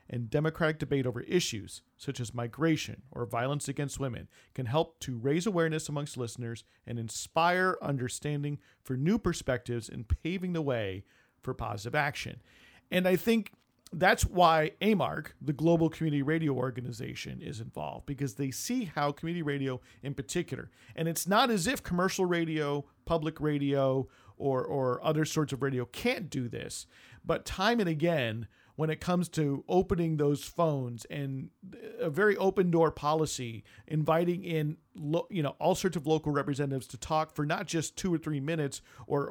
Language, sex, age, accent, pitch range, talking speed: English, male, 40-59, American, 130-165 Hz, 165 wpm